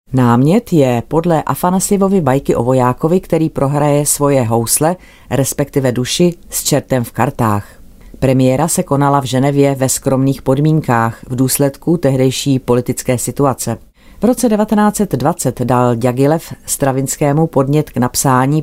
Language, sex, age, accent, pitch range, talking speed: Czech, female, 40-59, native, 120-150 Hz, 125 wpm